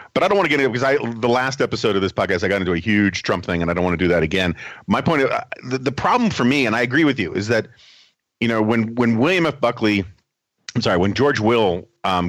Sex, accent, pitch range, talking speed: male, American, 95-125 Hz, 285 wpm